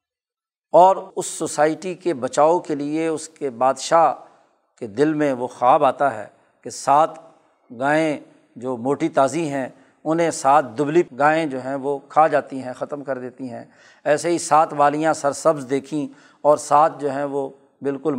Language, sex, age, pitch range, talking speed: Urdu, male, 40-59, 145-190 Hz, 165 wpm